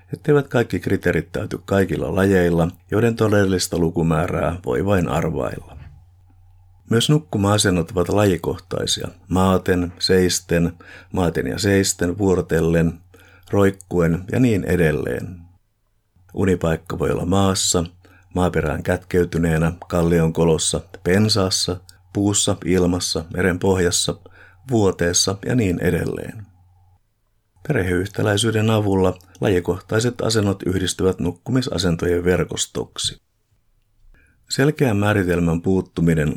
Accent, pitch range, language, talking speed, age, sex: native, 85-100 Hz, Finnish, 85 wpm, 50-69, male